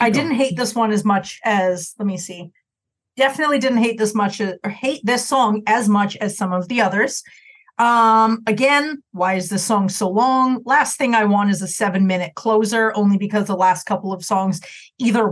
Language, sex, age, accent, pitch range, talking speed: English, female, 30-49, American, 195-235 Hz, 205 wpm